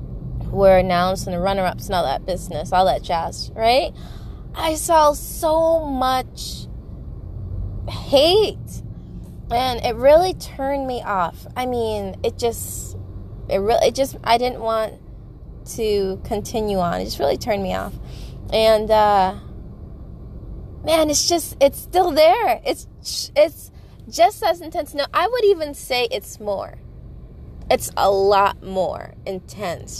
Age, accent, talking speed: 20-39, American, 140 wpm